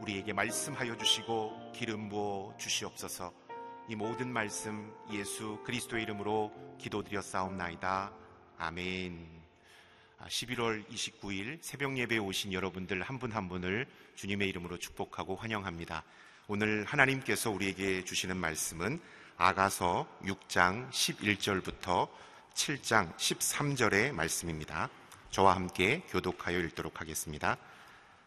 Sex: male